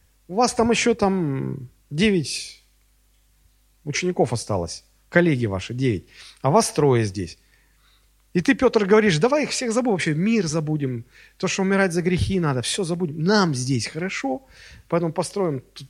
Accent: native